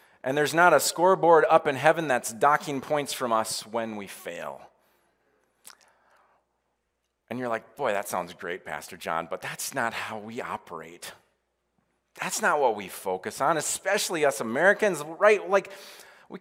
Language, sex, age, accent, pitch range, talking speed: English, male, 30-49, American, 125-200 Hz, 155 wpm